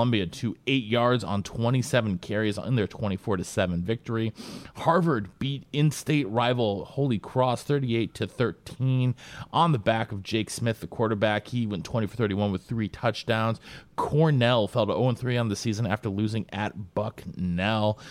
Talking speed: 165 wpm